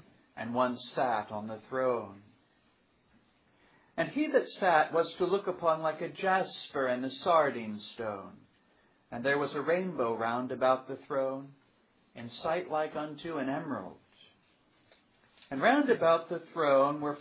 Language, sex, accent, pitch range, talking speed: English, male, American, 125-160 Hz, 145 wpm